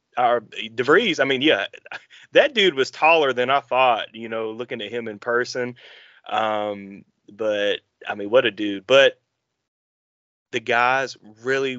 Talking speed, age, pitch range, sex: 150 wpm, 30-49, 110-135 Hz, male